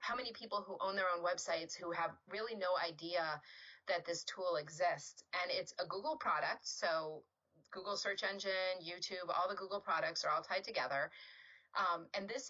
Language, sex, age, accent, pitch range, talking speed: English, female, 30-49, American, 175-235 Hz, 185 wpm